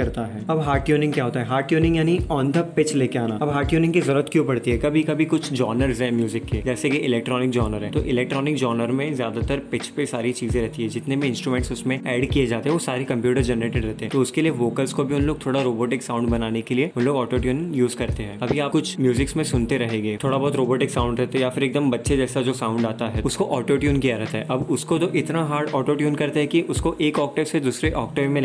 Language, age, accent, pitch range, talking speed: Hindi, 20-39, native, 120-145 Hz, 135 wpm